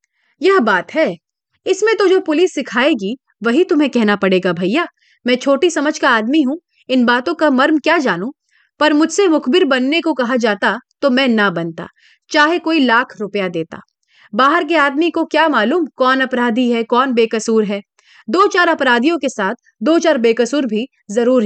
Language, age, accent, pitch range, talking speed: Hindi, 30-49, native, 220-325 Hz, 175 wpm